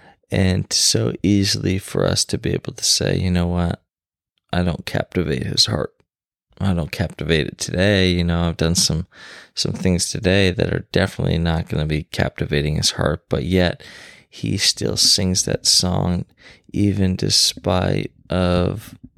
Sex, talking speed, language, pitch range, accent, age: male, 160 wpm, English, 80-95 Hz, American, 20-39